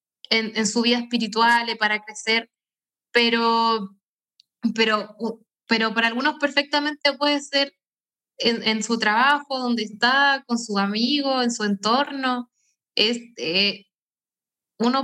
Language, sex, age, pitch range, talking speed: Spanish, female, 10-29, 225-260 Hz, 115 wpm